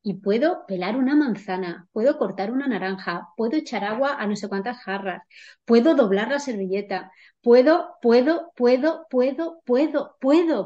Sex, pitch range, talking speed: female, 195-240 Hz, 150 wpm